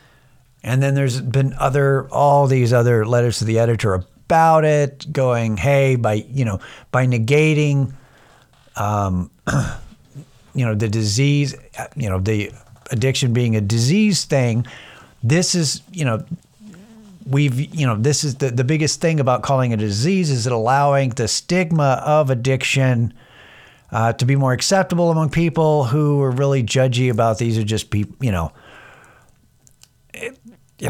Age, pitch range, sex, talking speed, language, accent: 50-69, 115-140 Hz, male, 150 wpm, English, American